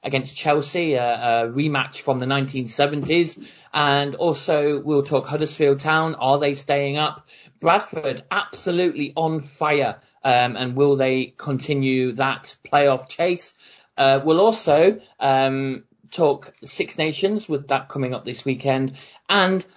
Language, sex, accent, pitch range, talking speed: English, male, British, 130-160 Hz, 135 wpm